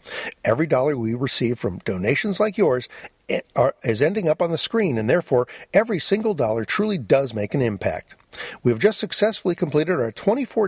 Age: 50-69